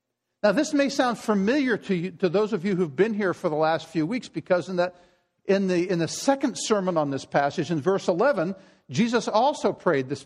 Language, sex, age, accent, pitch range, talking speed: English, male, 50-69, American, 170-230 Hz, 220 wpm